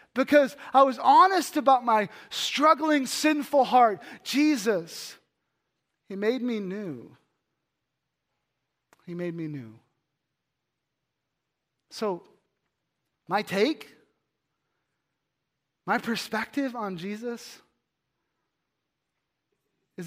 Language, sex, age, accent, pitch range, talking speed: English, male, 30-49, American, 150-230 Hz, 80 wpm